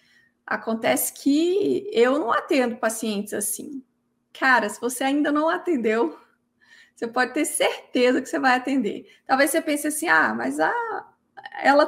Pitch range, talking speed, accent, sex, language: 240-295 Hz, 145 wpm, Brazilian, female, Portuguese